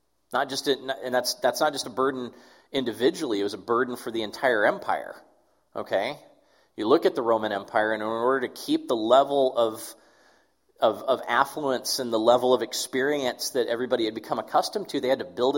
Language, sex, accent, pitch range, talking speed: English, male, American, 125-205 Hz, 200 wpm